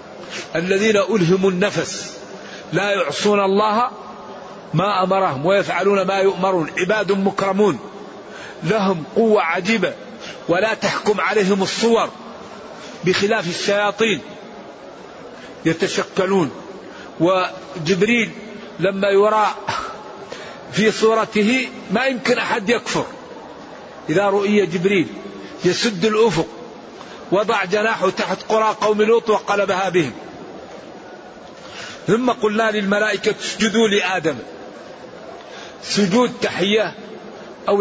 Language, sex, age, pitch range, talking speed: Arabic, male, 50-69, 190-220 Hz, 85 wpm